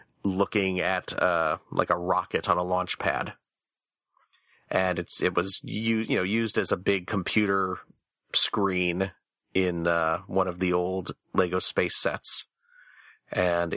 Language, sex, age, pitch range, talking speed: English, male, 30-49, 90-110 Hz, 140 wpm